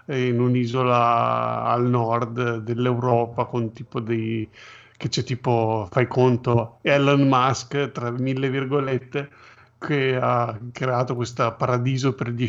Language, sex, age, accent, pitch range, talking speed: Italian, male, 50-69, native, 120-140 Hz, 120 wpm